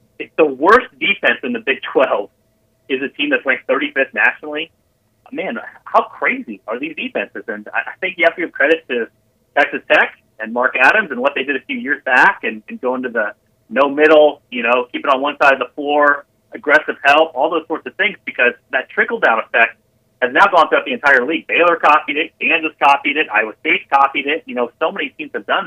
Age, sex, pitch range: 30-49, male, 125-170 Hz